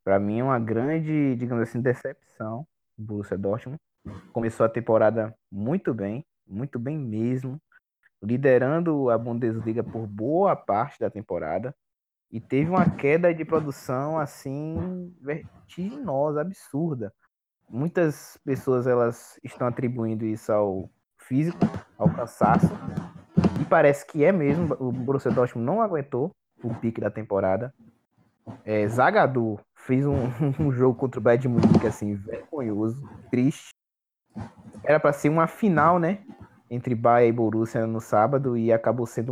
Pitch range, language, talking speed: 115-145 Hz, Portuguese, 135 wpm